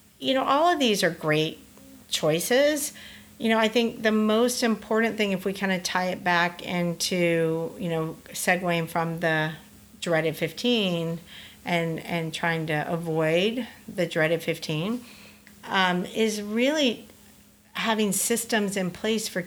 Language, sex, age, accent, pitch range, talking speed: English, female, 50-69, American, 165-220 Hz, 145 wpm